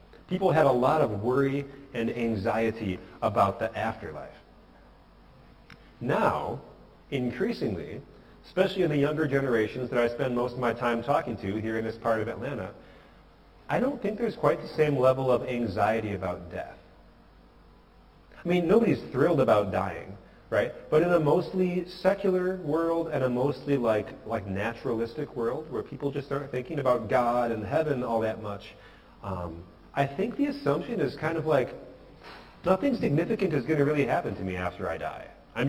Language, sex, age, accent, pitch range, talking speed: English, male, 40-59, American, 100-145 Hz, 165 wpm